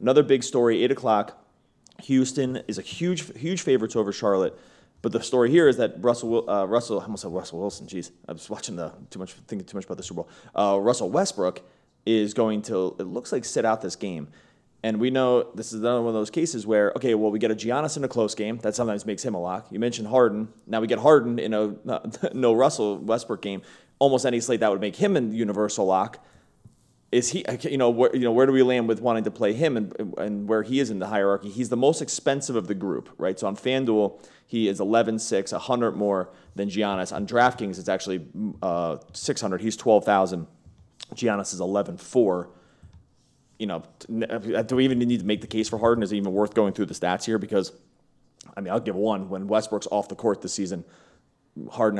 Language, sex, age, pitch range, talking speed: English, male, 30-49, 100-120 Hz, 225 wpm